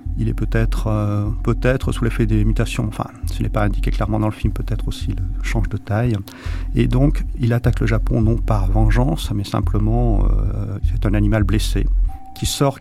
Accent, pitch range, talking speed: French, 90-120 Hz, 195 wpm